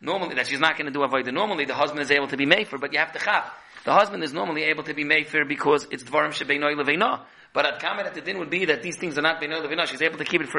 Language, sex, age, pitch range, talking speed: English, male, 40-59, 140-175 Hz, 310 wpm